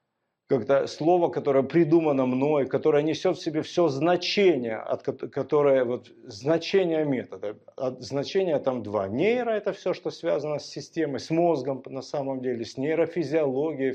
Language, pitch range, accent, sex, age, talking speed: Russian, 125-155 Hz, native, male, 40-59, 145 wpm